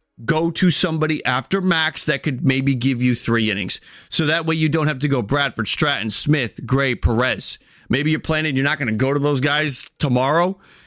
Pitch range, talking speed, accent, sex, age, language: 140-200 Hz, 205 wpm, American, male, 30-49, English